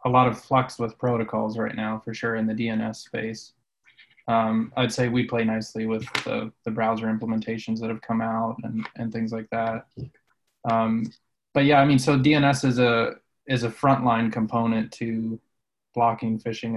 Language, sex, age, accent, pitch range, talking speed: English, male, 20-39, American, 110-125 Hz, 175 wpm